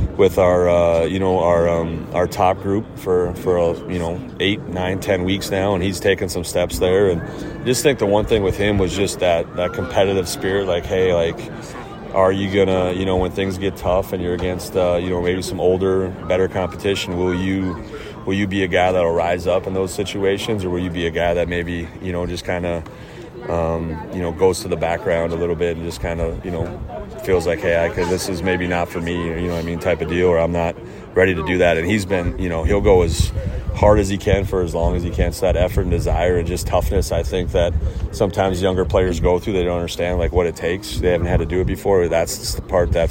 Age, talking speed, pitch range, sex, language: 30-49, 255 wpm, 85-95 Hz, male, English